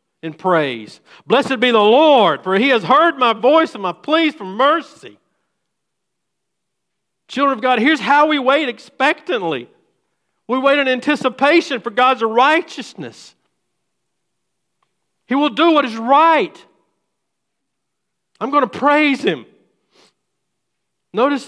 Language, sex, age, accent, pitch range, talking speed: English, male, 50-69, American, 155-255 Hz, 125 wpm